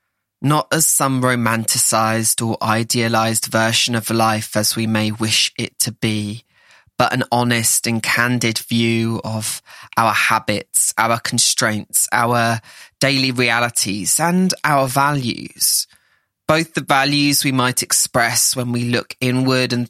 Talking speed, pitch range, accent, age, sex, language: 135 wpm, 110-125 Hz, British, 20-39, male, English